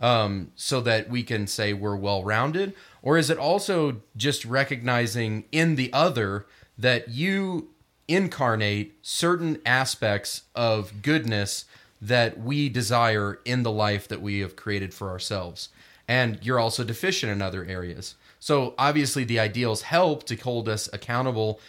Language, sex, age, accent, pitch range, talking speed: English, male, 30-49, American, 105-130 Hz, 145 wpm